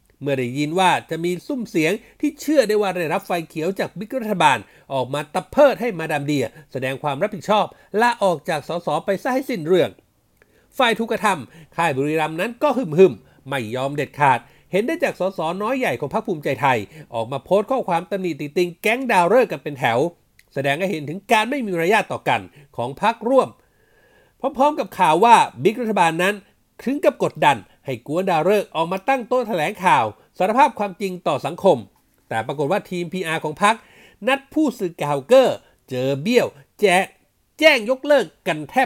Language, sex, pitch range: Thai, male, 155-230 Hz